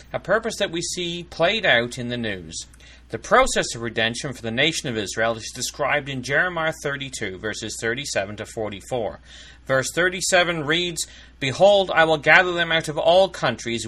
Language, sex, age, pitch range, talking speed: English, male, 30-49, 120-180 Hz, 175 wpm